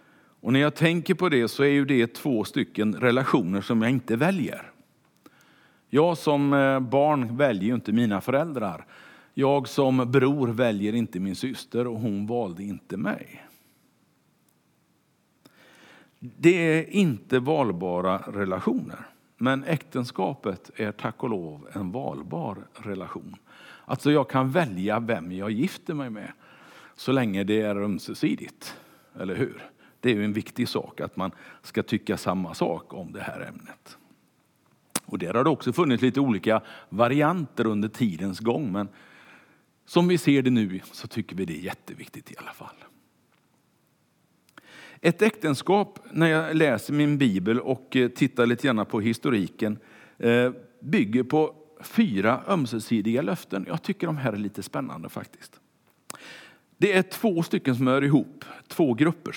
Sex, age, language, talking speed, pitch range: male, 50-69, Swedish, 145 wpm, 110-150 Hz